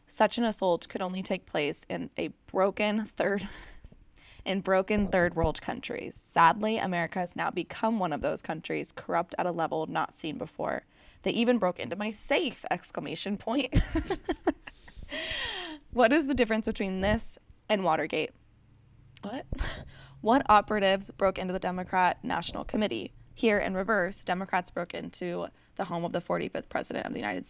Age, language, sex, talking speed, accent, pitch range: 10-29, English, female, 155 wpm, American, 175-220 Hz